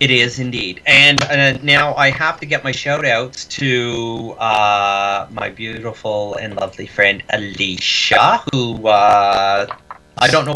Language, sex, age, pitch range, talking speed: English, male, 30-49, 105-130 Hz, 135 wpm